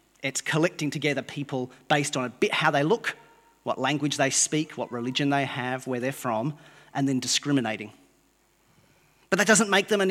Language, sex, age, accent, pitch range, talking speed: English, male, 30-49, Australian, 145-195 Hz, 185 wpm